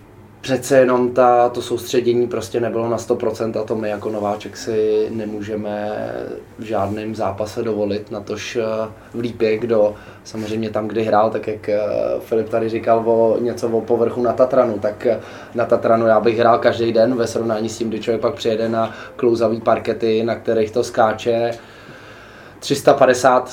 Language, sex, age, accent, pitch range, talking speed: Czech, male, 20-39, native, 110-120 Hz, 160 wpm